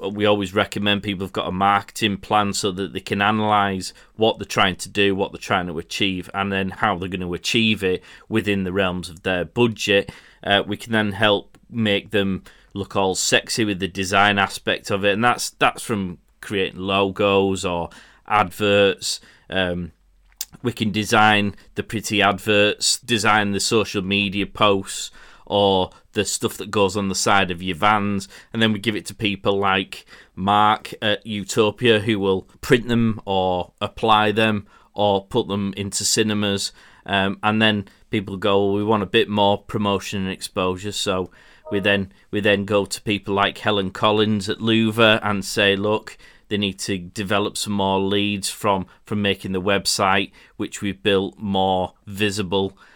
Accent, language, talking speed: British, English, 175 wpm